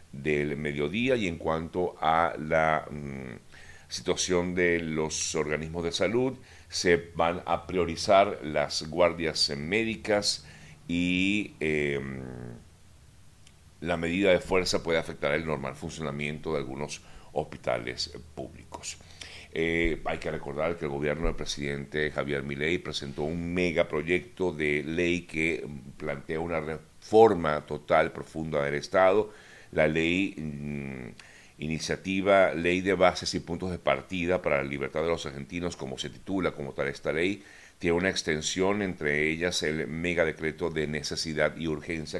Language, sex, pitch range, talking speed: Spanish, male, 75-90 Hz, 135 wpm